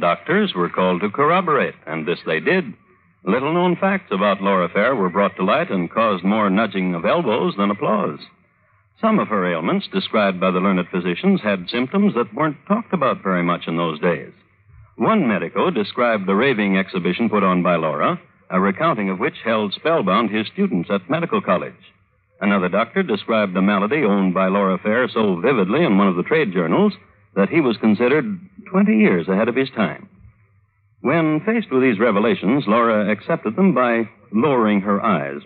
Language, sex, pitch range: English, male, 95-145 Hz